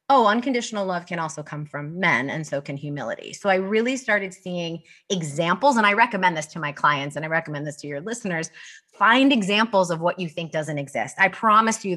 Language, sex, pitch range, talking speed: English, female, 160-225 Hz, 215 wpm